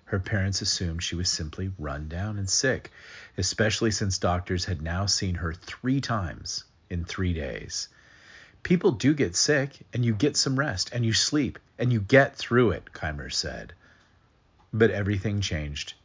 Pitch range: 85-110 Hz